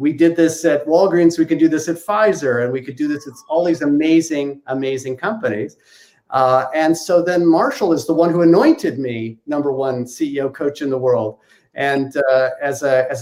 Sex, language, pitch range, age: male, English, 130-165 Hz, 50-69